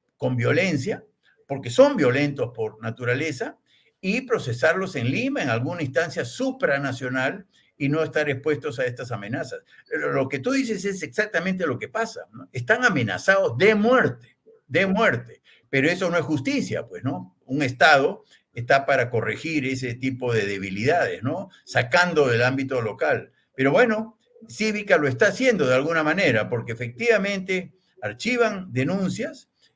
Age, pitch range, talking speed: 60-79, 130-195 Hz, 145 wpm